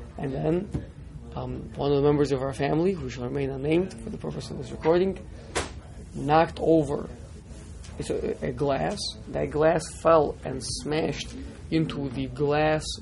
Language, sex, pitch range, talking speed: English, male, 120-155 Hz, 150 wpm